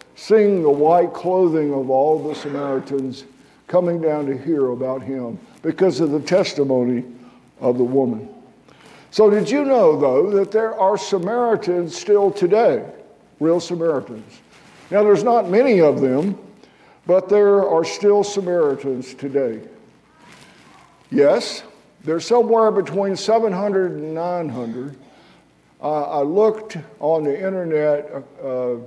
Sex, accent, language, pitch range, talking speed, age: male, American, English, 145-195 Hz, 125 wpm, 60-79